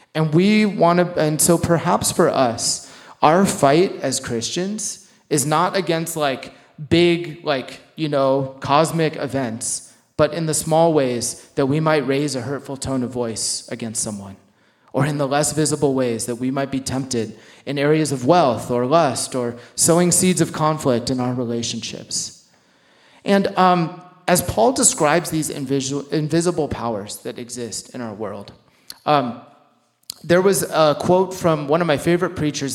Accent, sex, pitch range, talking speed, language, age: American, male, 125-165 Hz, 160 wpm, English, 30-49